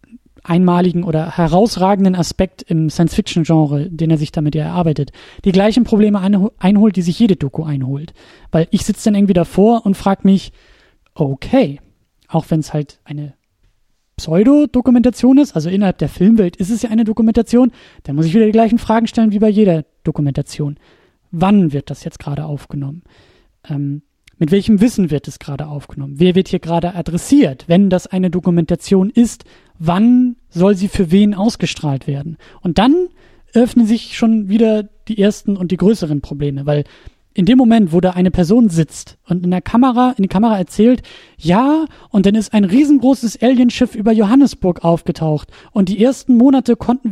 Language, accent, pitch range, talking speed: German, German, 160-225 Hz, 170 wpm